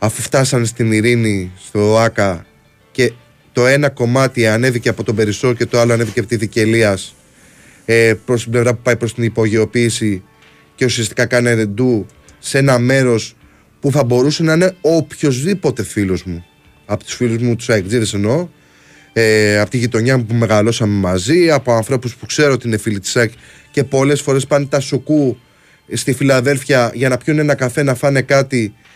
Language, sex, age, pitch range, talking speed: Greek, male, 20-39, 110-145 Hz, 170 wpm